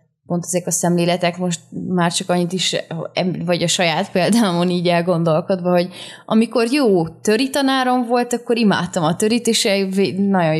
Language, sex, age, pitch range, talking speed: Hungarian, female, 20-39, 170-195 Hz, 140 wpm